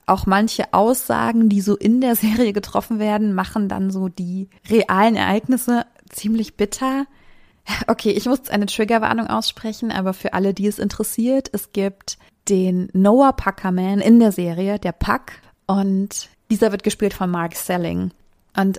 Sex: female